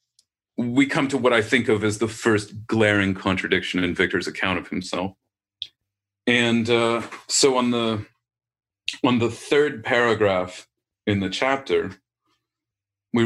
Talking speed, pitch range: 130 wpm, 105-135 Hz